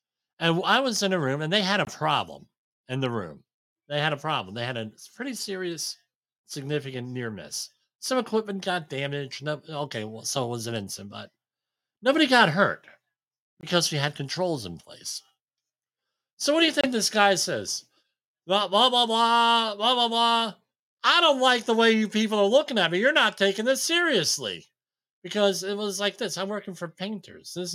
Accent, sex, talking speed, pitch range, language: American, male, 185 wpm, 130-205 Hz, English